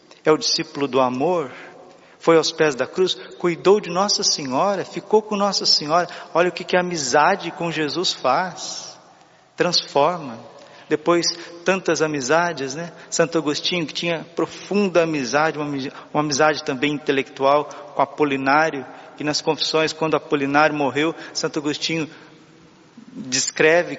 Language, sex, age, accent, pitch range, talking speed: Portuguese, male, 50-69, Brazilian, 145-170 Hz, 130 wpm